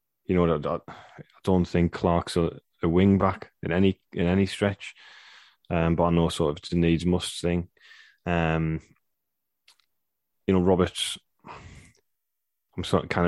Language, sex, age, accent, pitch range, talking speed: English, male, 10-29, British, 85-100 Hz, 145 wpm